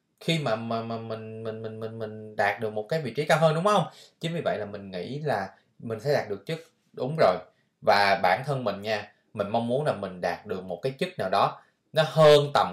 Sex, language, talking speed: male, Vietnamese, 245 wpm